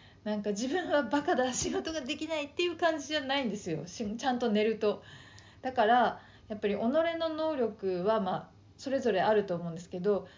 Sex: female